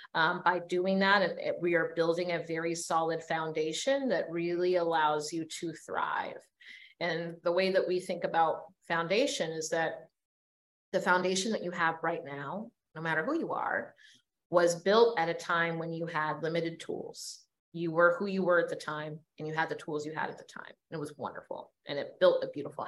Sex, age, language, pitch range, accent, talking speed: female, 30-49, English, 150-175 Hz, American, 195 wpm